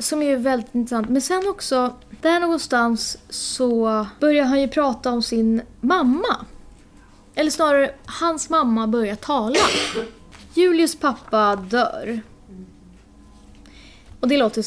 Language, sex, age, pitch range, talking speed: Swedish, female, 20-39, 215-275 Hz, 120 wpm